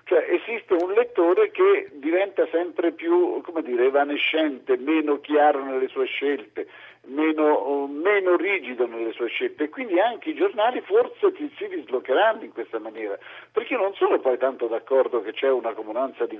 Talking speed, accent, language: 170 wpm, native, Italian